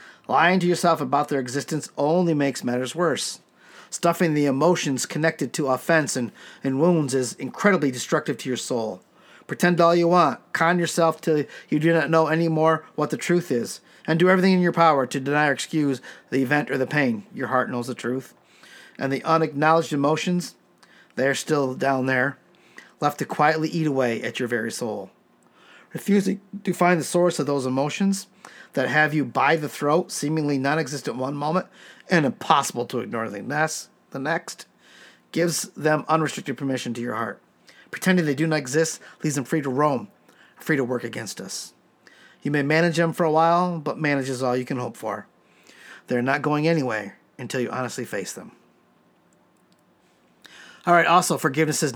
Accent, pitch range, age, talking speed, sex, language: American, 140-170 Hz, 50-69, 175 wpm, male, English